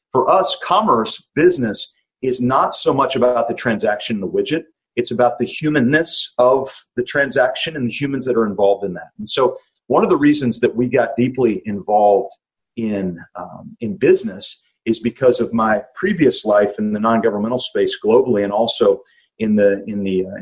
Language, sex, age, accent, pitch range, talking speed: English, male, 40-59, American, 110-150 Hz, 180 wpm